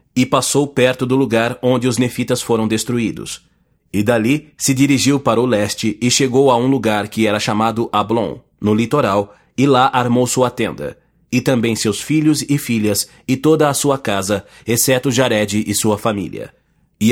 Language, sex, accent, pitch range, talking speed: English, male, Brazilian, 110-135 Hz, 175 wpm